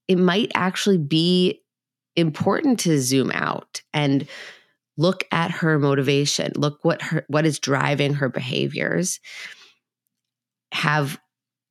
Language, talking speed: English, 115 wpm